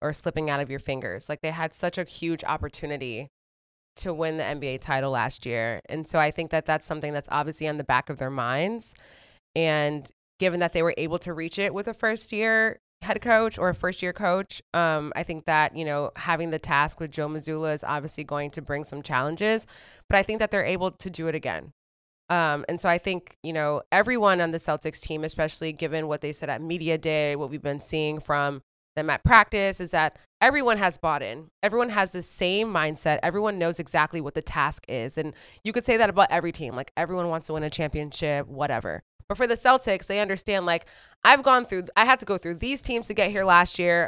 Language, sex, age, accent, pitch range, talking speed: English, female, 20-39, American, 150-190 Hz, 230 wpm